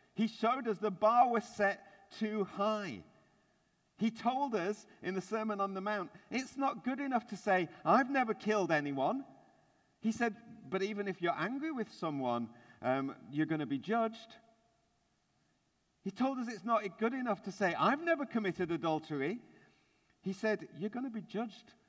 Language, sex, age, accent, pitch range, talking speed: English, male, 50-69, British, 135-205 Hz, 175 wpm